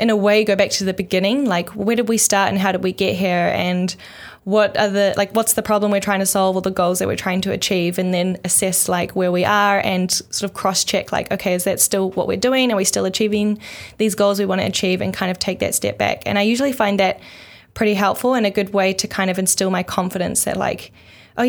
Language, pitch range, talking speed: English, 185-215 Hz, 270 wpm